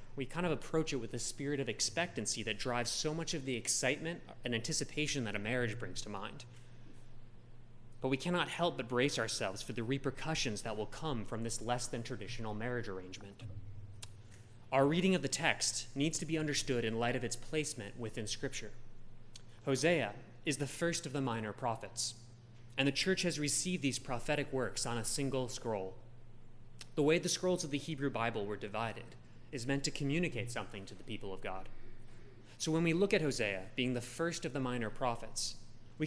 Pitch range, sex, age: 115-145 Hz, male, 20-39